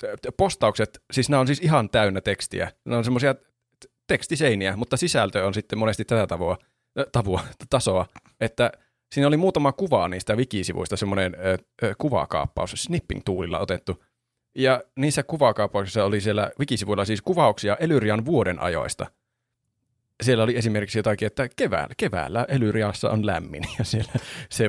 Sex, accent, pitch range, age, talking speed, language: male, native, 105-135 Hz, 30-49, 135 wpm, Finnish